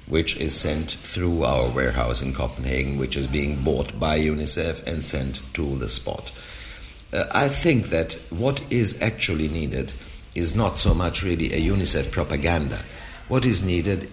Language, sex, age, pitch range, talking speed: English, male, 60-79, 70-100 Hz, 160 wpm